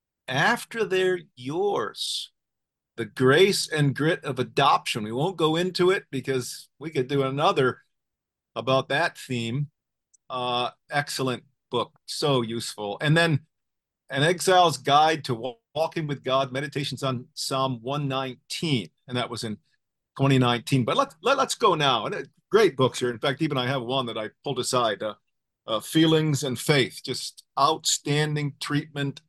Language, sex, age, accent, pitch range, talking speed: English, male, 40-59, American, 130-165 Hz, 145 wpm